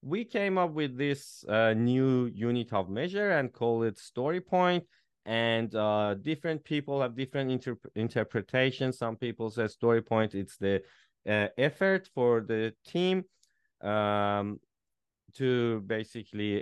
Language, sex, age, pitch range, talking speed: English, male, 30-49, 100-135 Hz, 135 wpm